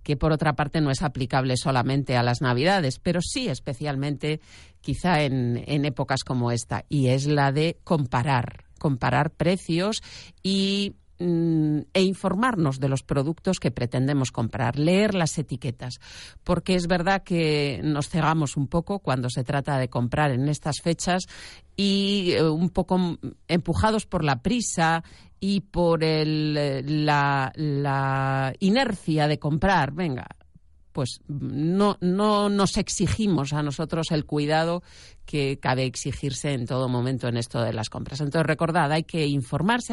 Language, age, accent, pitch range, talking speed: Spanish, 40-59, Spanish, 135-180 Hz, 145 wpm